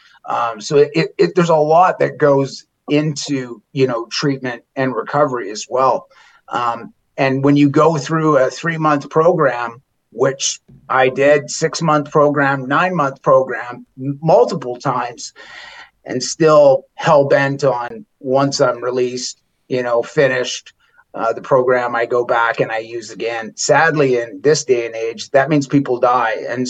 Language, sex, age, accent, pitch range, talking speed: English, male, 30-49, American, 130-160 Hz, 145 wpm